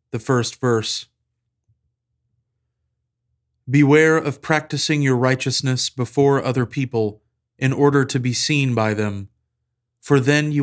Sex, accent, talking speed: male, American, 120 wpm